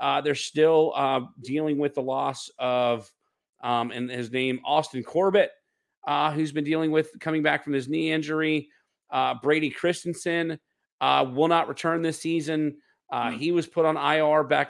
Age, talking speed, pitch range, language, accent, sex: 40-59, 170 wpm, 130-160 Hz, English, American, male